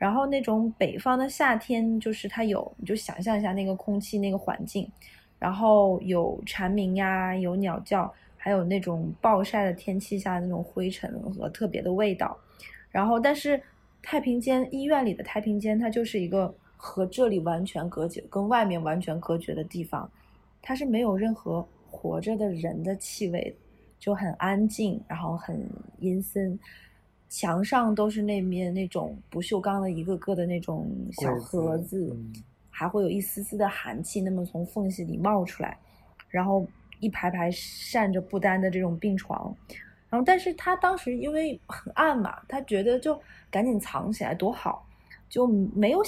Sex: female